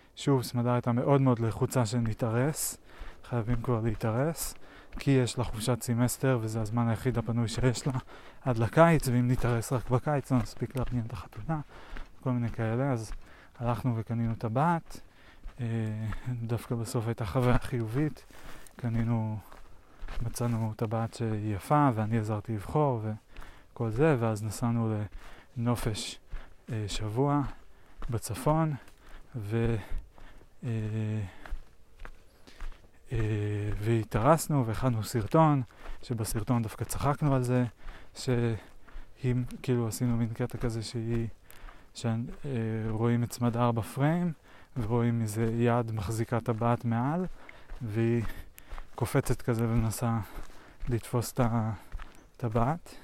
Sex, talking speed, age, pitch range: male, 110 wpm, 20-39, 110-125 Hz